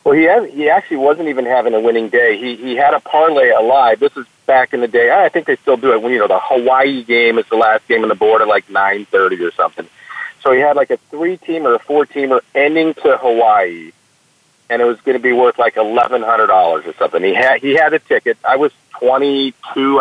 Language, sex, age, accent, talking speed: English, male, 40-59, American, 255 wpm